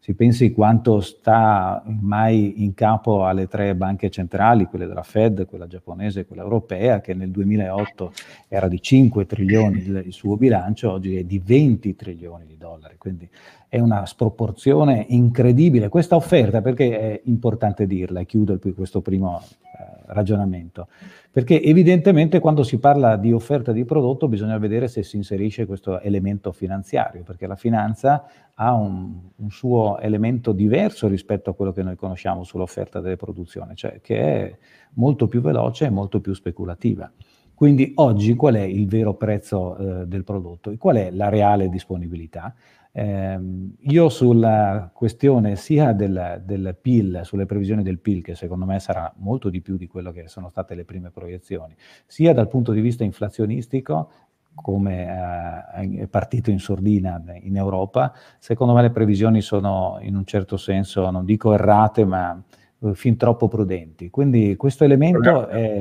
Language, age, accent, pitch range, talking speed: Italian, 40-59, native, 95-115 Hz, 160 wpm